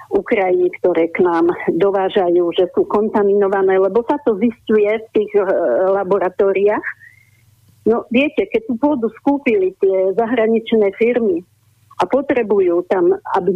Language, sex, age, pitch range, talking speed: Slovak, female, 50-69, 205-270 Hz, 130 wpm